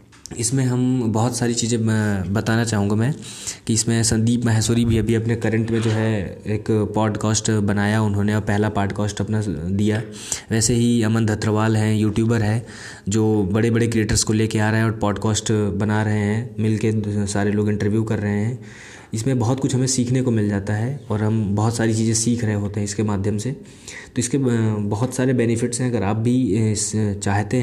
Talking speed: 190 wpm